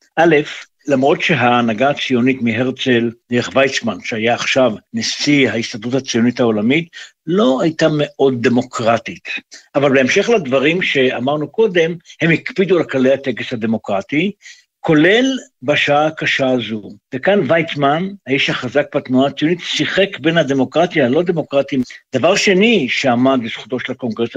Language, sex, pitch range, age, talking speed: Hebrew, male, 125-155 Hz, 60-79, 120 wpm